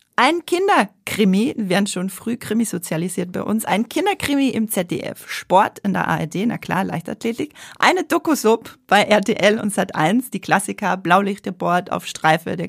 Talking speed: 155 wpm